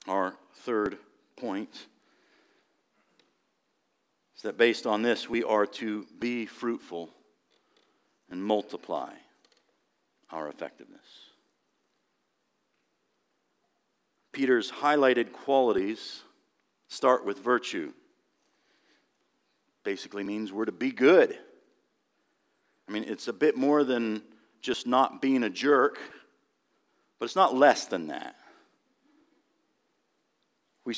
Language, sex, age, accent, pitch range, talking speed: English, male, 50-69, American, 115-155 Hz, 95 wpm